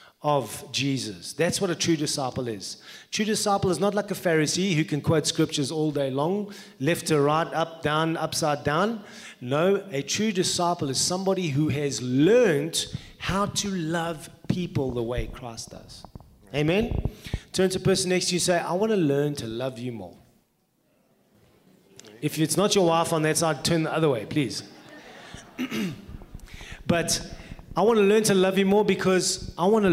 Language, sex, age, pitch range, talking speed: English, male, 30-49, 135-185 Hz, 180 wpm